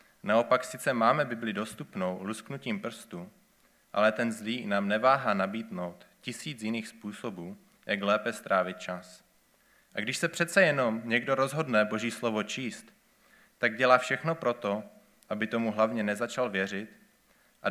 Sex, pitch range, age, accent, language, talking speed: male, 100-120 Hz, 20-39, native, Czech, 135 wpm